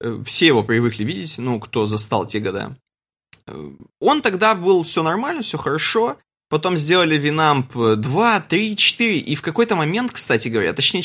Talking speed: 155 wpm